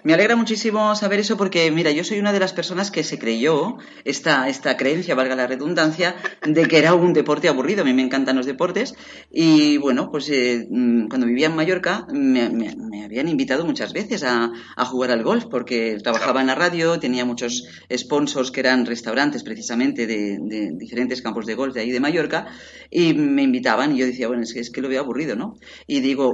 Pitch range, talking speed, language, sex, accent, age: 125-180 Hz, 210 wpm, Spanish, female, Spanish, 40-59